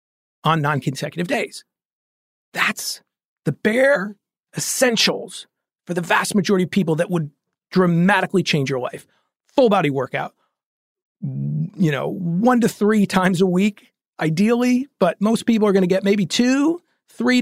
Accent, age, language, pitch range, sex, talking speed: American, 40-59, English, 155-220 Hz, male, 140 wpm